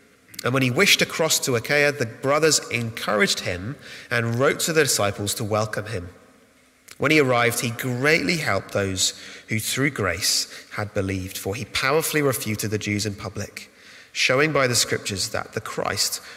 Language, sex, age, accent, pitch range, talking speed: English, male, 30-49, British, 115-160 Hz, 170 wpm